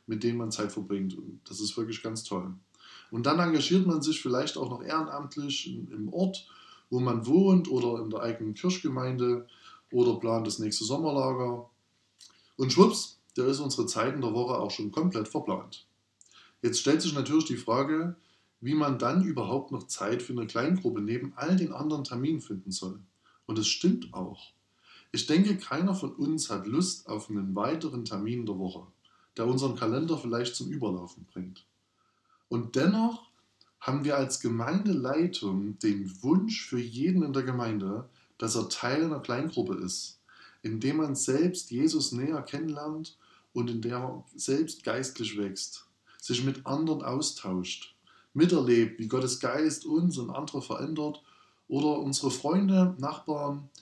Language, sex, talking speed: German, male, 160 wpm